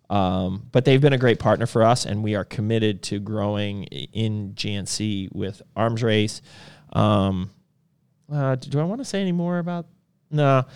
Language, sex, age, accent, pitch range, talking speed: English, male, 20-39, American, 110-155 Hz, 175 wpm